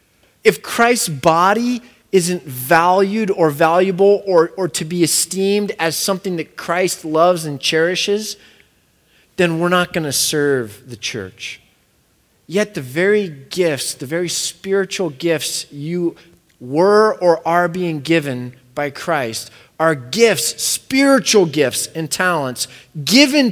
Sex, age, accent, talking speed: male, 30-49, American, 130 wpm